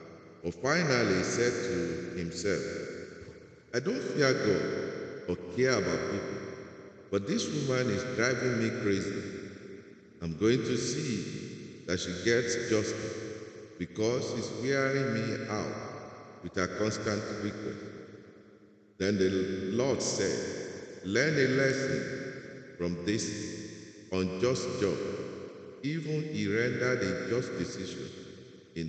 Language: English